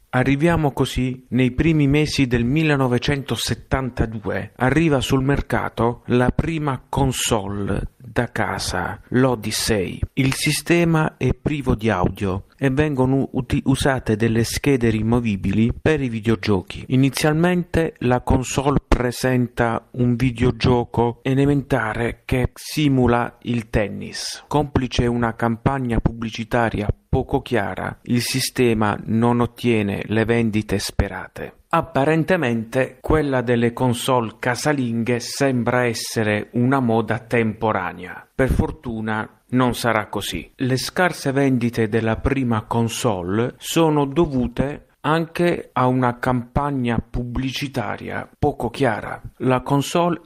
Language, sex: Italian, male